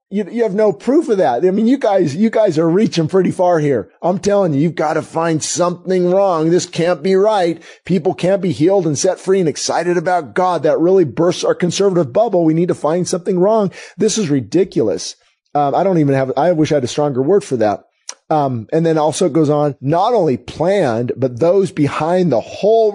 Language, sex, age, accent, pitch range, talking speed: English, male, 30-49, American, 140-185 Hz, 225 wpm